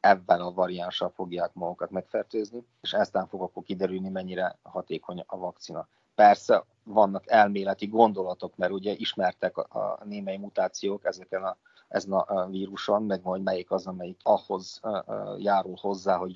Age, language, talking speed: 30-49, Hungarian, 145 wpm